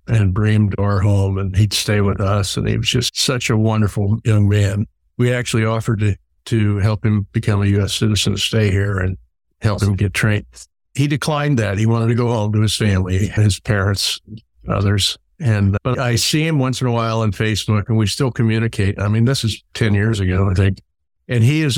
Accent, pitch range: American, 100-115 Hz